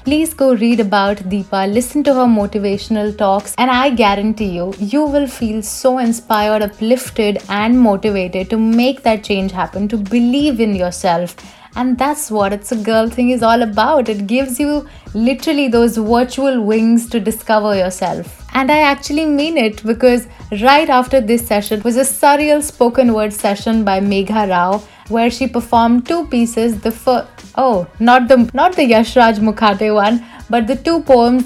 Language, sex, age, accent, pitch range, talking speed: English, female, 30-49, Indian, 210-260 Hz, 170 wpm